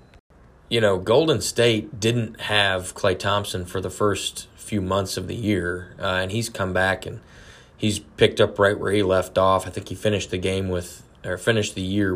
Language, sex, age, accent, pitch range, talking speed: English, male, 20-39, American, 90-100 Hz, 200 wpm